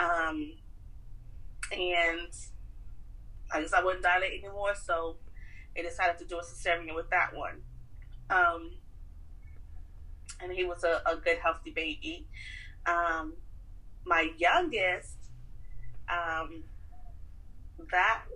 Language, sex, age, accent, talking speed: English, female, 30-49, American, 105 wpm